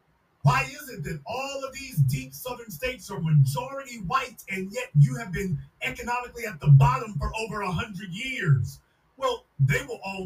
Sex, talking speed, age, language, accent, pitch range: male, 175 wpm, 40-59, English, American, 140-180 Hz